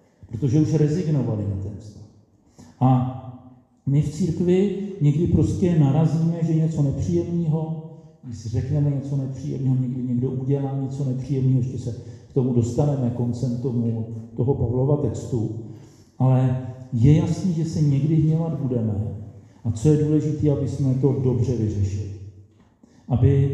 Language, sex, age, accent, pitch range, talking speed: Czech, male, 50-69, native, 110-140 Hz, 135 wpm